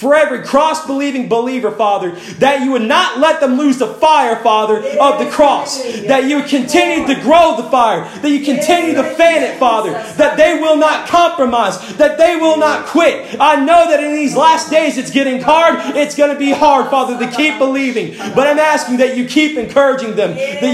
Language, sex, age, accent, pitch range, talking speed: English, male, 30-49, American, 260-310 Hz, 205 wpm